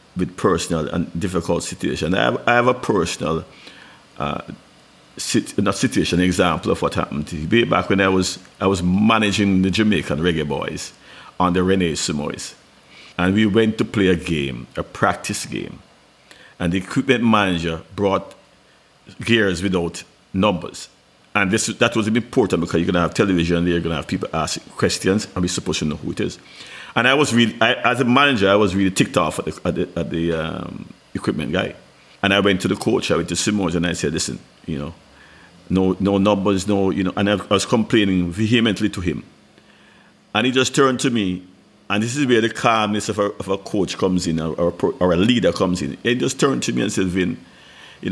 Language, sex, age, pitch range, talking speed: English, male, 50-69, 85-105 Hz, 210 wpm